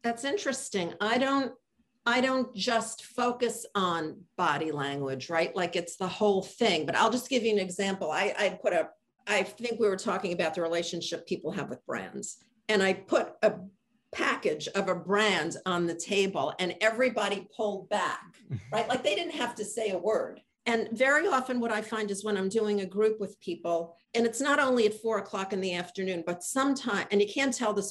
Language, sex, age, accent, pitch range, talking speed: English, female, 50-69, American, 180-235 Hz, 205 wpm